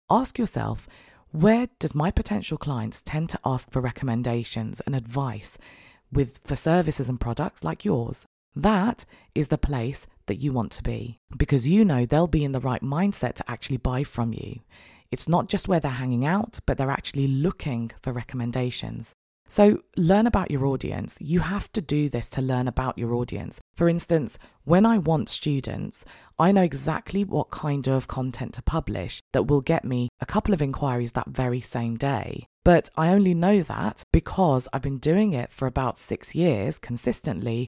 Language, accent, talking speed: English, British, 180 wpm